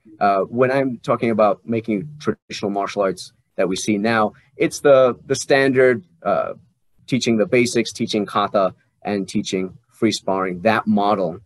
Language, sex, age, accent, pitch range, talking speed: English, male, 30-49, American, 105-130 Hz, 150 wpm